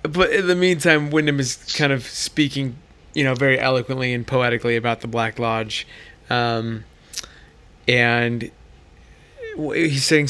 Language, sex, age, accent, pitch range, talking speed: English, male, 20-39, American, 115-140 Hz, 135 wpm